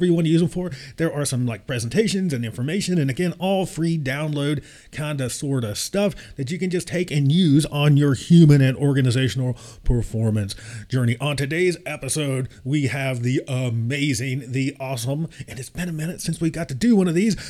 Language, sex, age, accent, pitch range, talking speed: English, male, 30-49, American, 125-165 Hz, 200 wpm